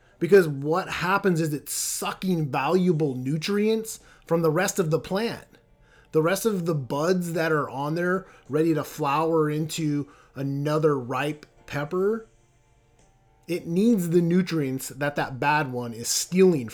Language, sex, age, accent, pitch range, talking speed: English, male, 30-49, American, 130-185 Hz, 145 wpm